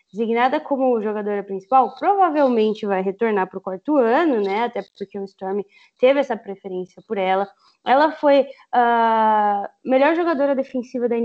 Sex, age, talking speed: female, 20-39, 160 wpm